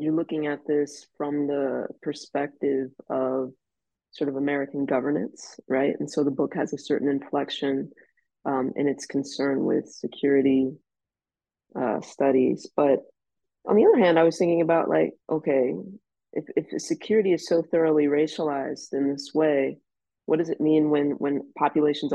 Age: 20-39